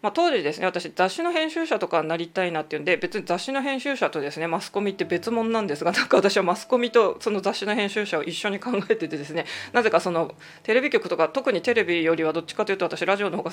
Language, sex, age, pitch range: Japanese, female, 20-39, 170-230 Hz